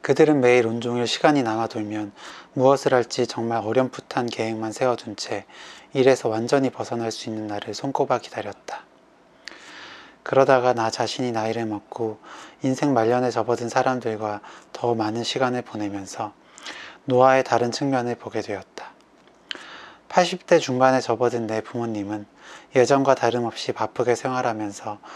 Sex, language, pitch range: male, Korean, 115-135 Hz